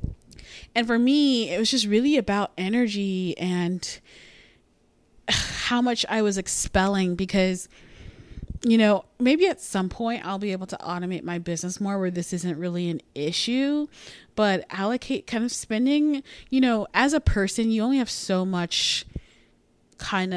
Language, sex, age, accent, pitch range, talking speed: English, female, 20-39, American, 185-235 Hz, 155 wpm